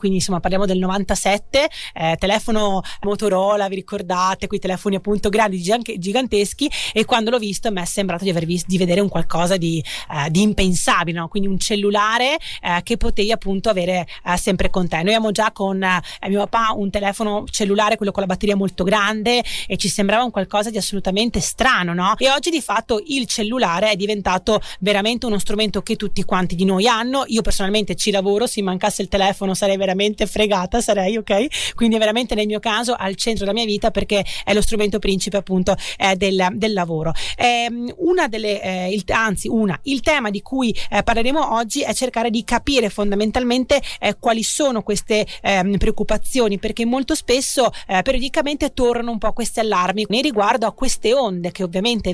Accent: native